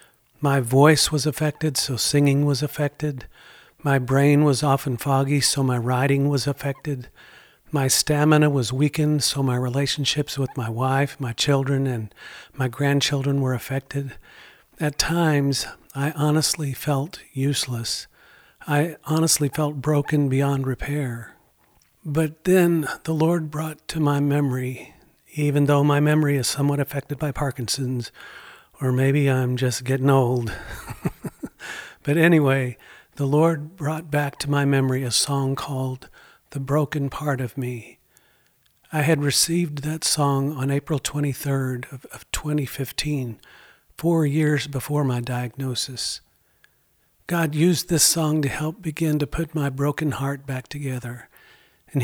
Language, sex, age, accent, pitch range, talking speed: English, male, 50-69, American, 130-150 Hz, 135 wpm